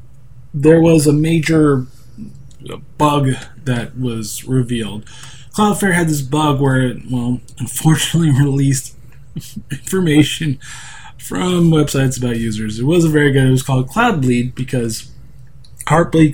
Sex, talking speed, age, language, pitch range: male, 120 wpm, 20-39, English, 130-155 Hz